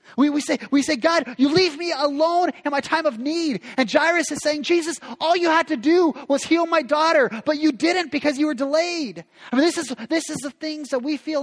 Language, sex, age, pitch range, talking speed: English, male, 30-49, 180-280 Hz, 245 wpm